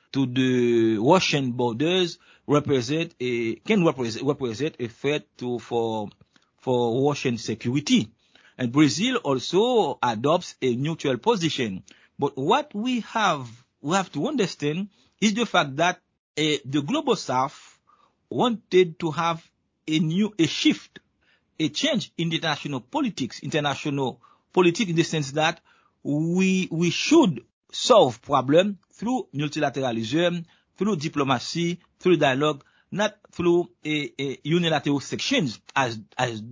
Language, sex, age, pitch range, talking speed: English, male, 50-69, 135-175 Hz, 120 wpm